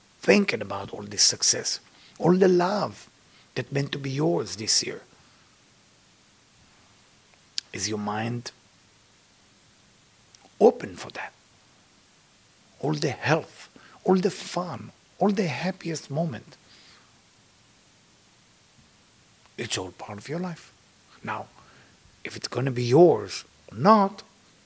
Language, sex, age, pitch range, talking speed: English, male, 50-69, 105-180 Hz, 105 wpm